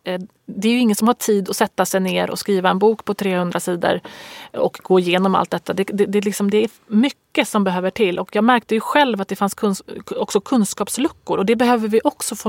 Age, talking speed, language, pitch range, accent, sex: 30-49, 215 wpm, Swedish, 195-230 Hz, native, female